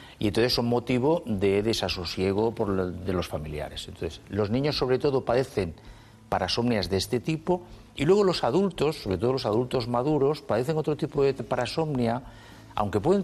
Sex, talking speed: male, 165 wpm